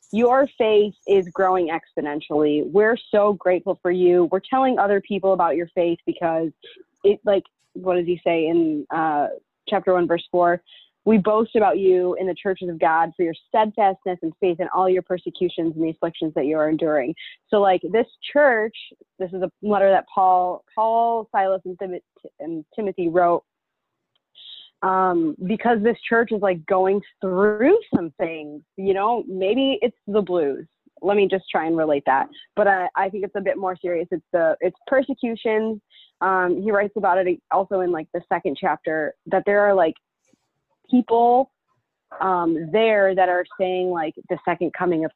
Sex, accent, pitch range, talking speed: female, American, 175-210 Hz, 175 wpm